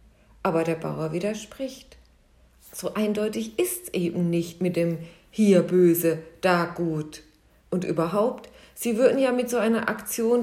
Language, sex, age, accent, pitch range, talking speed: German, female, 50-69, German, 170-225 Hz, 145 wpm